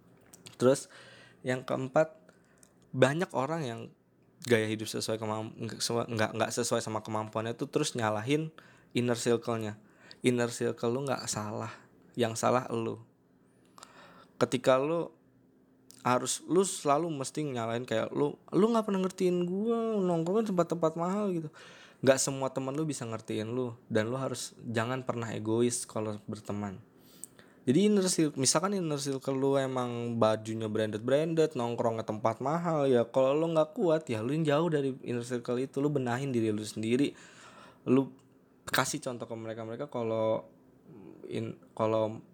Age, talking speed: 20-39, 135 wpm